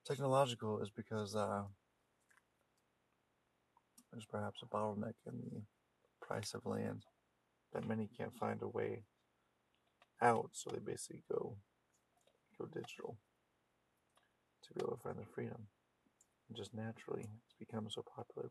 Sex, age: male, 30-49